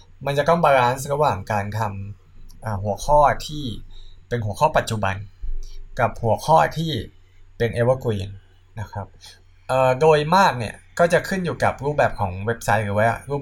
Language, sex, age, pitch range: Thai, male, 20-39, 95-130 Hz